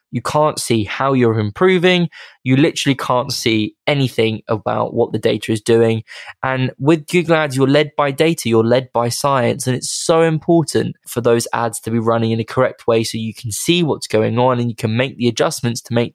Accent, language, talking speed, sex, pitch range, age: British, English, 215 wpm, male, 115-145 Hz, 20-39